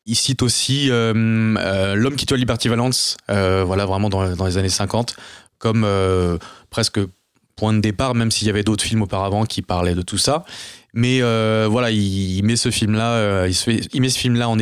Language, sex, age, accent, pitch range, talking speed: French, male, 20-39, French, 95-125 Hz, 215 wpm